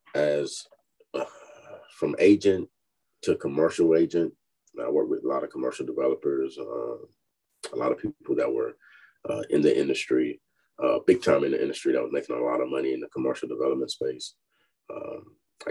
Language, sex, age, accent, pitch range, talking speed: English, male, 30-49, American, 340-420 Hz, 175 wpm